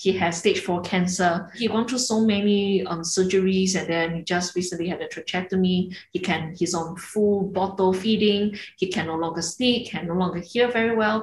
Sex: female